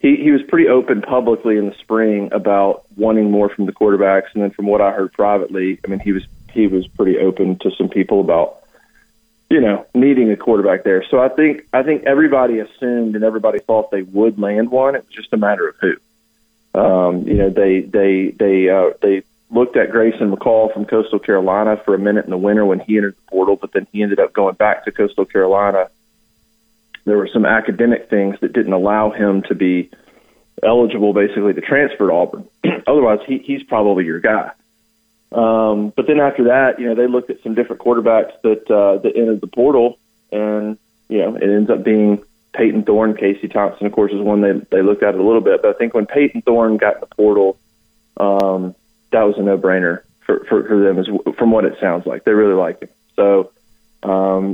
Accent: American